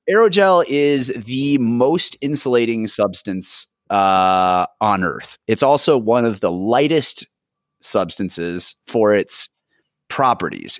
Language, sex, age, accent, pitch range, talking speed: English, male, 30-49, American, 100-130 Hz, 105 wpm